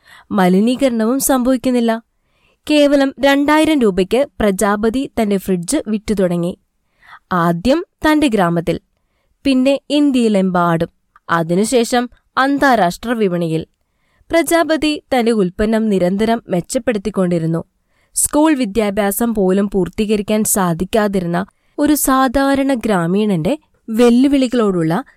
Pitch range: 190-260 Hz